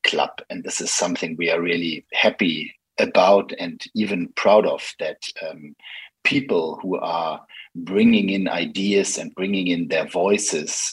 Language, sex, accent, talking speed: Danish, male, German, 150 wpm